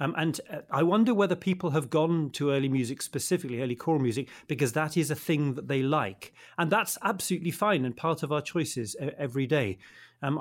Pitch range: 130-170 Hz